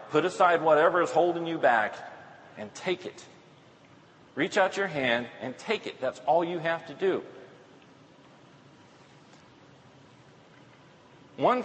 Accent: American